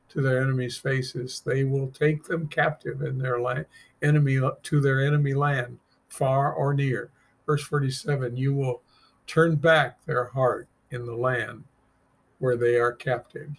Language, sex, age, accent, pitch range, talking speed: English, male, 50-69, American, 125-145 Hz, 155 wpm